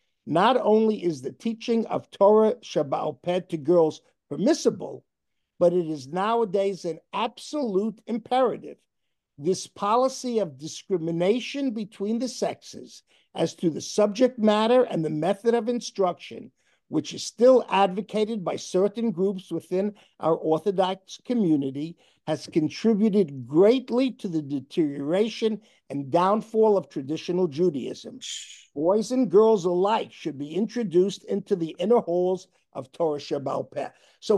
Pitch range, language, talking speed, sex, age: 175-230 Hz, English, 125 wpm, male, 50-69